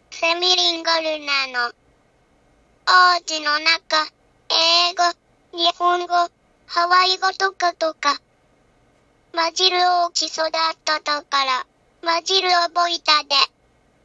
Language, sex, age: Japanese, male, 20-39